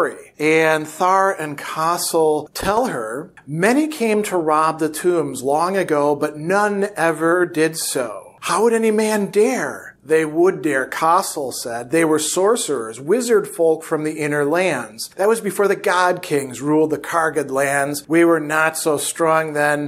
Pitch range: 150-180 Hz